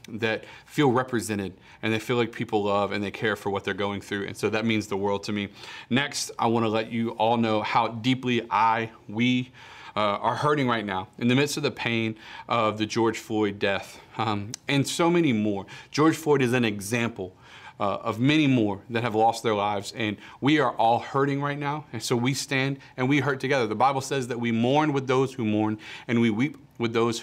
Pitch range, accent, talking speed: 110-130 Hz, American, 225 wpm